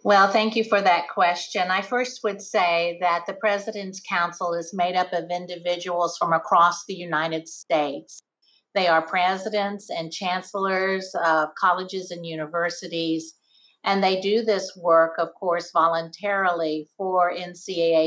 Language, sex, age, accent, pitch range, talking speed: English, female, 50-69, American, 170-200 Hz, 145 wpm